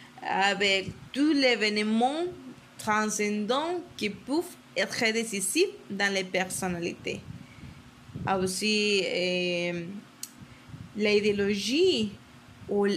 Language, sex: French, female